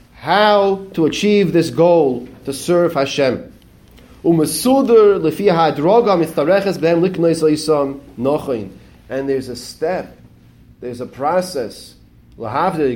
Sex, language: male, English